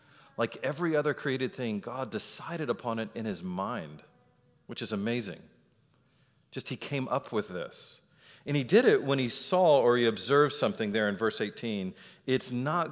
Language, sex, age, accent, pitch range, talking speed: English, male, 40-59, American, 115-155 Hz, 175 wpm